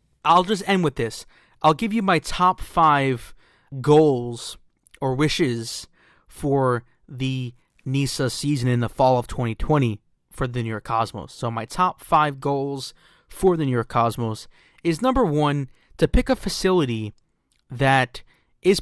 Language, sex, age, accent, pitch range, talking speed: English, male, 20-39, American, 130-175 Hz, 150 wpm